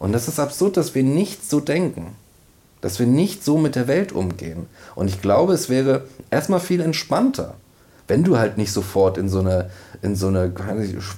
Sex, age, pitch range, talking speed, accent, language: male, 40-59, 100-130 Hz, 195 wpm, German, German